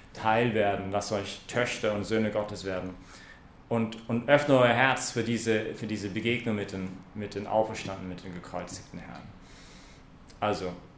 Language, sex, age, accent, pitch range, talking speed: English, male, 30-49, German, 95-110 Hz, 160 wpm